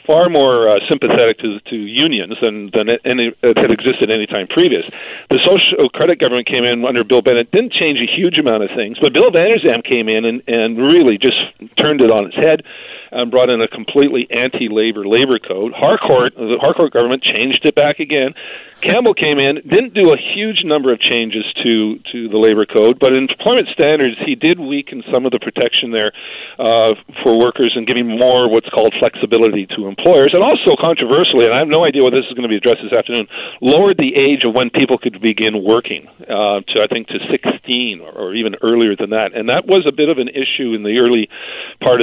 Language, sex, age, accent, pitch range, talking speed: English, male, 50-69, American, 115-150 Hz, 210 wpm